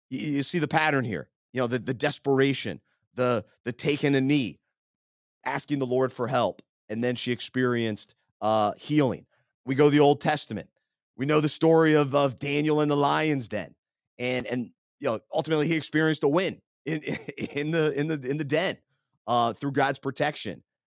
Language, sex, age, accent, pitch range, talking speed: English, male, 30-49, American, 115-145 Hz, 185 wpm